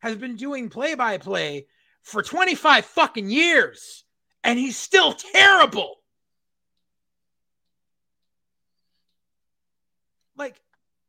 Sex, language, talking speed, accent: male, English, 70 wpm, American